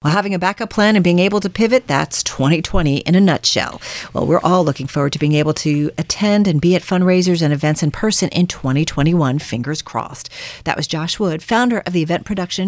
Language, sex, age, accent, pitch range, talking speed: English, female, 40-59, American, 155-210 Hz, 220 wpm